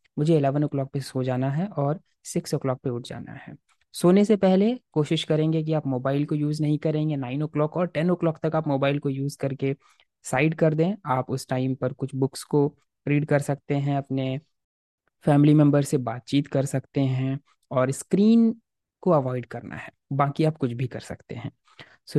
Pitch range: 130-155 Hz